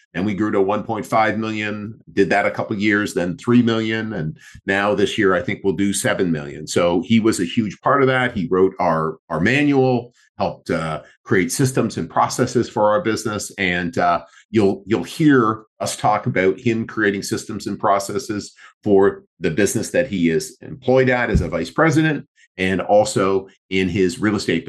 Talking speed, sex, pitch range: 190 wpm, male, 95-120 Hz